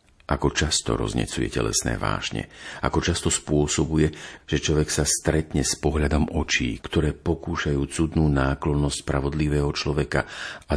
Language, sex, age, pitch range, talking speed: Slovak, male, 50-69, 65-75 Hz, 125 wpm